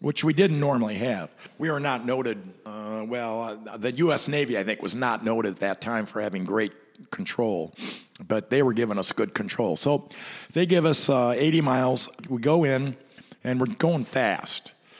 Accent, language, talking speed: American, English, 190 wpm